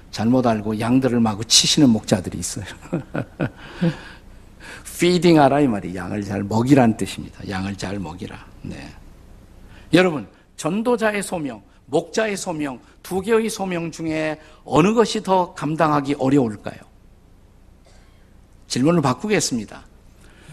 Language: Korean